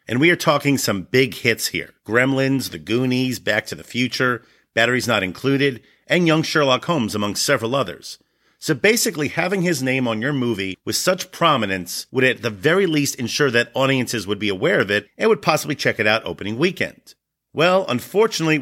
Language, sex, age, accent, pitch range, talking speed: English, male, 40-59, American, 115-155 Hz, 190 wpm